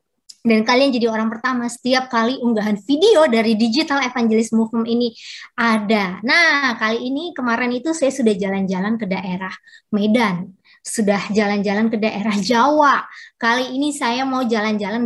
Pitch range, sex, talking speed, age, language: 220-265 Hz, male, 145 wpm, 20-39, Indonesian